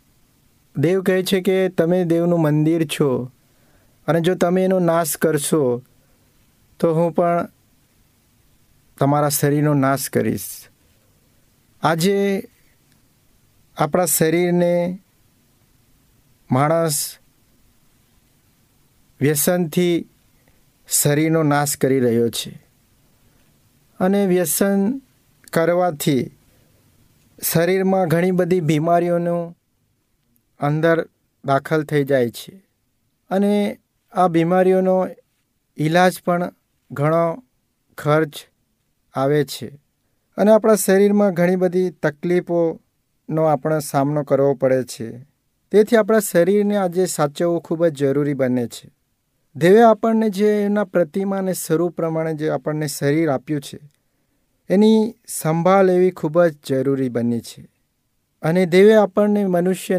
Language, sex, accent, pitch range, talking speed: Hindi, male, native, 135-185 Hz, 85 wpm